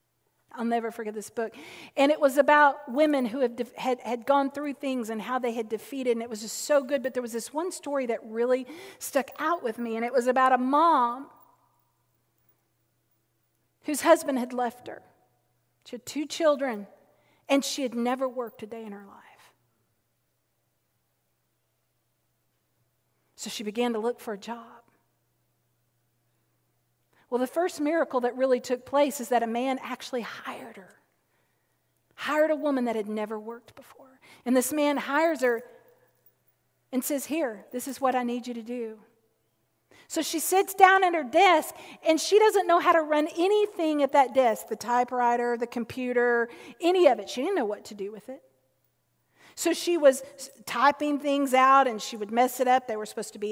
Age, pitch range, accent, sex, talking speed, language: 40-59, 225-285 Hz, American, female, 180 wpm, English